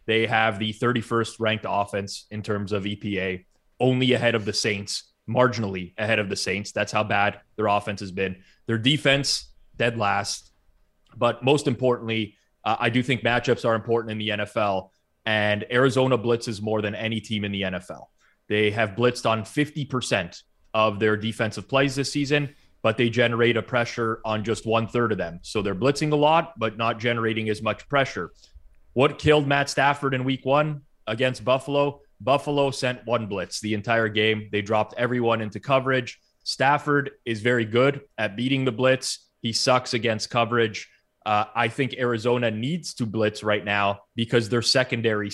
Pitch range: 105-125 Hz